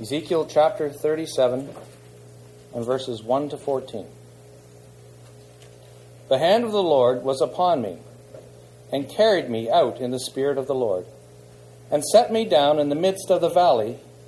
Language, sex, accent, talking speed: English, male, American, 150 wpm